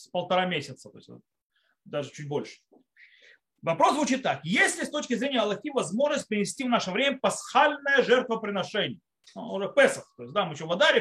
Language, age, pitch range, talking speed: Russian, 30-49, 160-250 Hz, 180 wpm